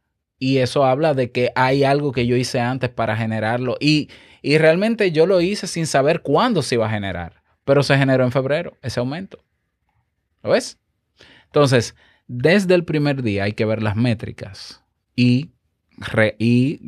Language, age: Spanish, 20-39